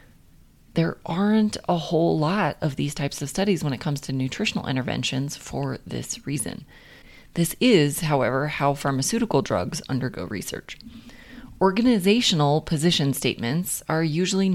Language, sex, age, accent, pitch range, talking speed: English, female, 30-49, American, 135-185 Hz, 130 wpm